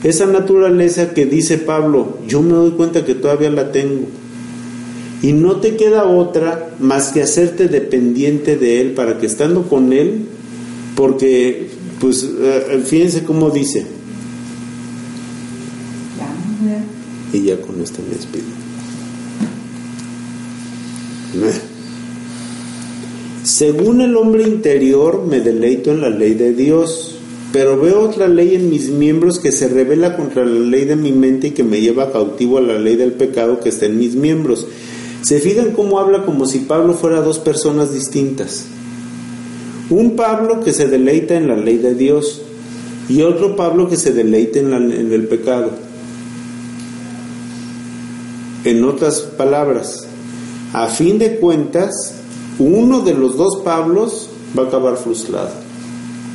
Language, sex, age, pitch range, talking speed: Spanish, male, 50-69, 120-160 Hz, 135 wpm